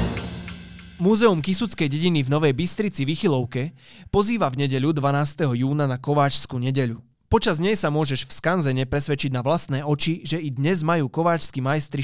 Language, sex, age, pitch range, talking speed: Slovak, male, 20-39, 135-175 Hz, 160 wpm